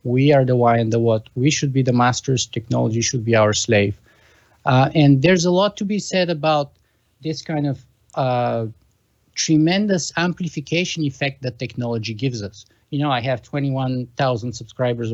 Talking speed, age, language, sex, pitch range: 170 wpm, 50-69, English, male, 125-170 Hz